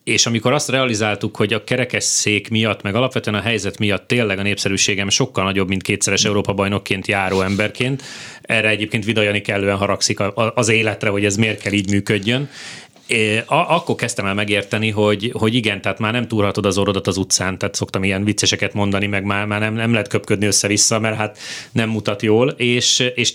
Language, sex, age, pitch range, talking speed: Hungarian, male, 30-49, 100-115 Hz, 180 wpm